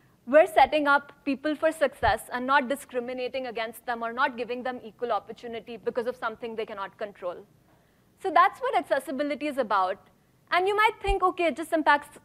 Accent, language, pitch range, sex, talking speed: Indian, English, 235-315 Hz, female, 180 wpm